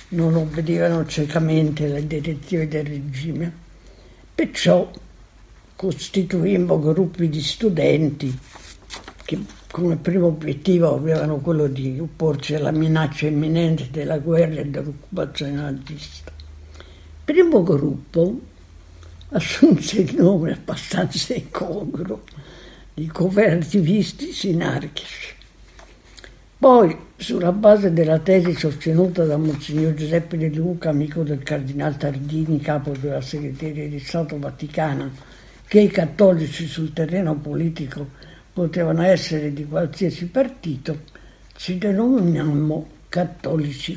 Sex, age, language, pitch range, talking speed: female, 60-79, Italian, 145-175 Hz, 100 wpm